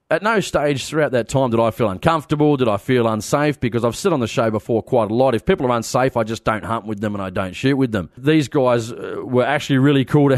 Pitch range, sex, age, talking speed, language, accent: 115-145 Hz, male, 30-49, 270 wpm, English, Australian